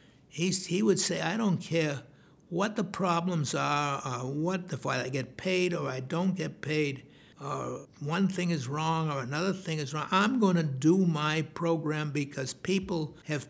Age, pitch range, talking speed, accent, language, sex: 60-79, 155-200 Hz, 180 wpm, American, English, male